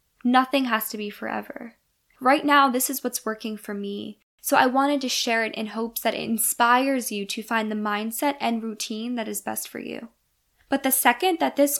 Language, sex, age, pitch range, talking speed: English, female, 10-29, 215-265 Hz, 210 wpm